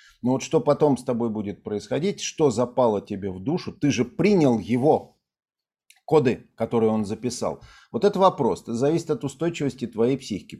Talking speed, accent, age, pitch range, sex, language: 175 wpm, native, 50-69, 115-145 Hz, male, Russian